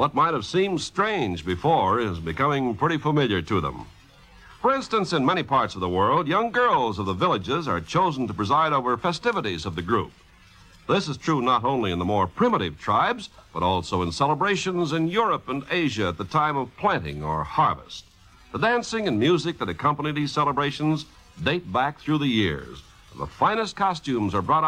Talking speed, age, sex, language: 185 wpm, 60-79, male, English